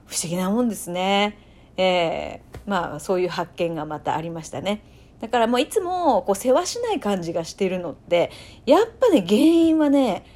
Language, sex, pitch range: Japanese, female, 190-310 Hz